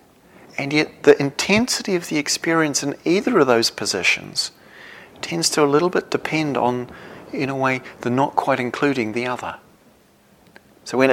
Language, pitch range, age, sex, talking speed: English, 115-140 Hz, 40-59, male, 160 wpm